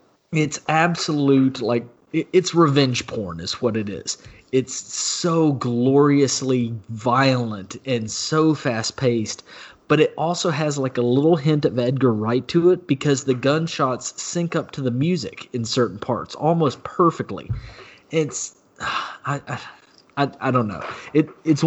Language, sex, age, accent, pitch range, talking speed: English, male, 30-49, American, 120-140 Hz, 140 wpm